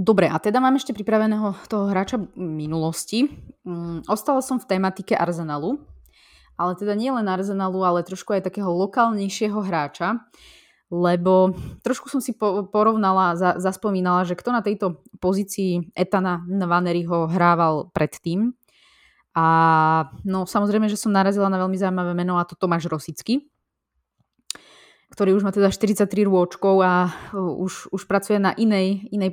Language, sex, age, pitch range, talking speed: Slovak, female, 20-39, 170-205 Hz, 140 wpm